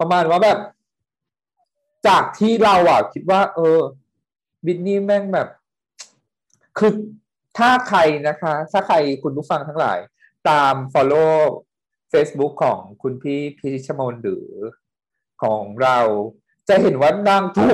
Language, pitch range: Thai, 135-205 Hz